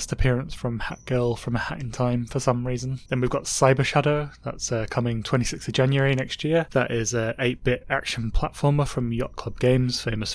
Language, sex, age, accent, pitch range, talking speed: English, male, 20-39, British, 115-135 Hz, 210 wpm